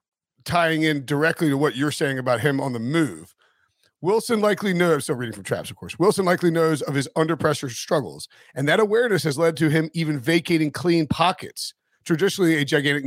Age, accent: 40-59, American